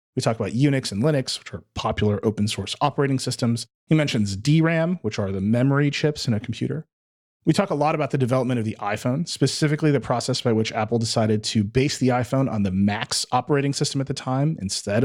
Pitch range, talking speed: 110-140 Hz, 215 wpm